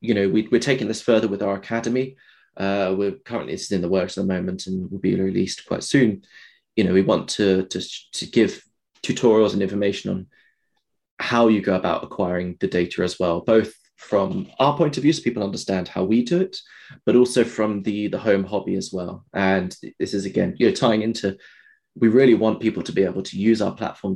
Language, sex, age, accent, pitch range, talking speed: English, male, 20-39, British, 95-120 Hz, 220 wpm